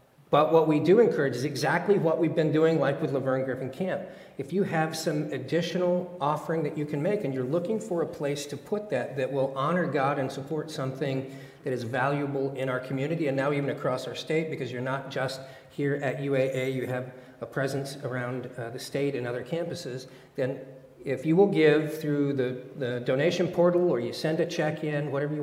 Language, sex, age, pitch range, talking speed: English, male, 40-59, 130-155 Hz, 210 wpm